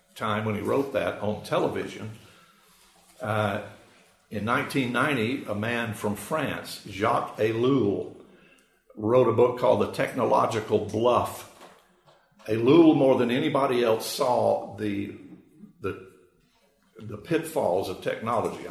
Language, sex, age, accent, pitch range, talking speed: English, male, 50-69, American, 105-120 Hz, 110 wpm